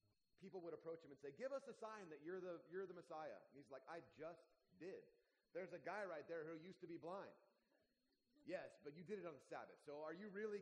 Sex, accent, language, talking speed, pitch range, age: male, American, English, 250 wpm, 160-225 Hz, 30-49